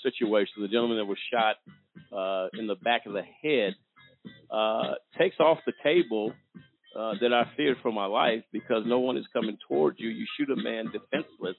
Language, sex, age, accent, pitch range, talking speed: English, male, 50-69, American, 115-150 Hz, 190 wpm